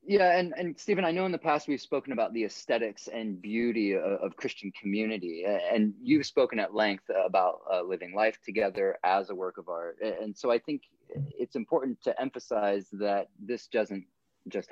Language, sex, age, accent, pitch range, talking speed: English, male, 30-49, American, 90-115 Hz, 190 wpm